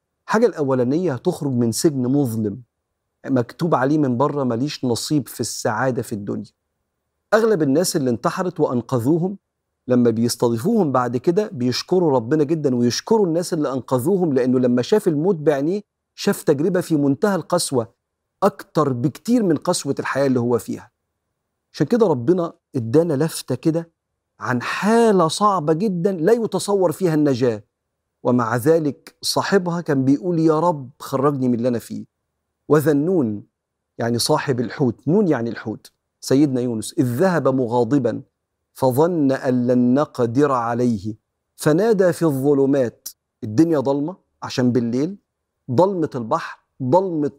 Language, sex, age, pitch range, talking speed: Arabic, male, 40-59, 125-165 Hz, 130 wpm